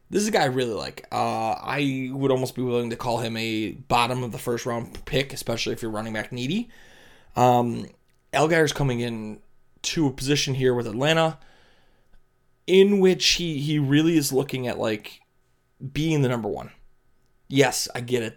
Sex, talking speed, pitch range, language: male, 185 wpm, 125-150 Hz, English